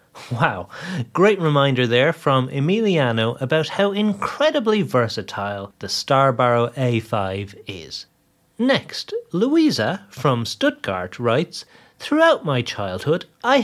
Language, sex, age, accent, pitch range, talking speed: English, male, 30-49, British, 115-190 Hz, 100 wpm